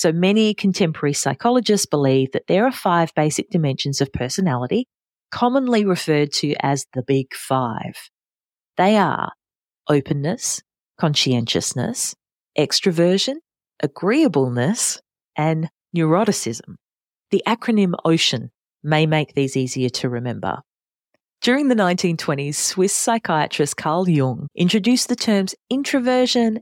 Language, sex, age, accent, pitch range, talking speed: English, female, 40-59, Australian, 150-215 Hz, 110 wpm